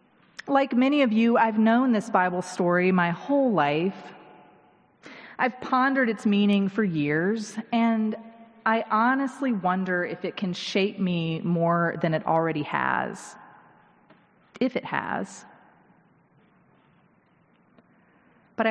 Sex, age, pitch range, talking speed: female, 30-49, 190-235 Hz, 115 wpm